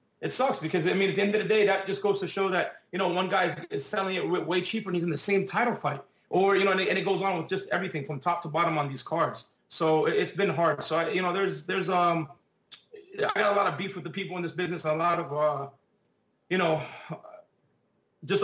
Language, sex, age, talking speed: English, male, 30-49, 265 wpm